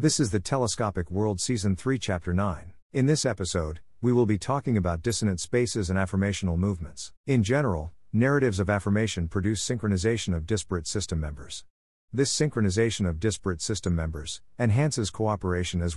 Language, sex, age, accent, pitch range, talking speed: English, male, 50-69, American, 90-115 Hz, 160 wpm